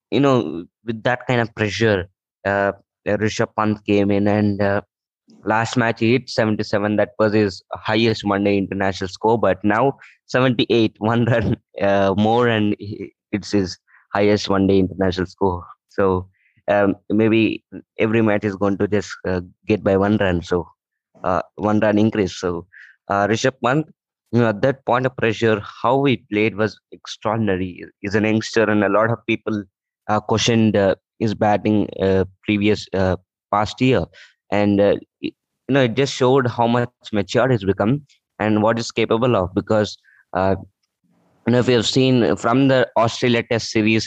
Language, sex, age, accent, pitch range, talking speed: English, male, 20-39, Indian, 100-115 Hz, 170 wpm